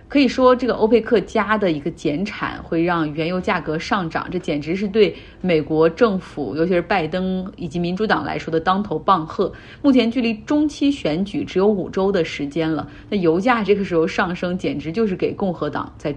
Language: Chinese